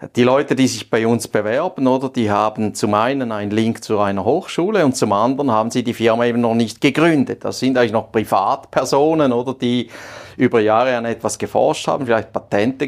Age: 40-59